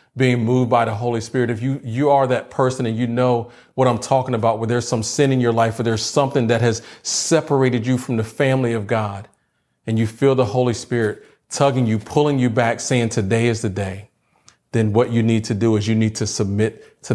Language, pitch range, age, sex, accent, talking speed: English, 110-125 Hz, 40-59, male, American, 230 wpm